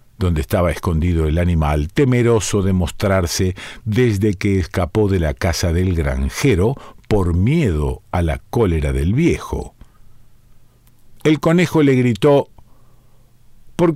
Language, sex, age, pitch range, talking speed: Spanish, male, 50-69, 95-130 Hz, 120 wpm